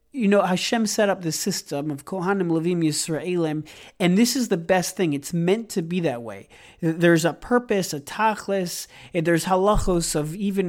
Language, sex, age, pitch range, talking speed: English, male, 40-59, 155-200 Hz, 185 wpm